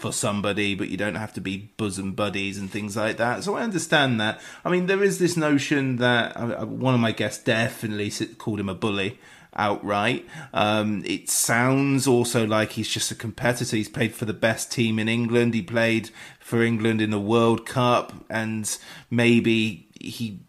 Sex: male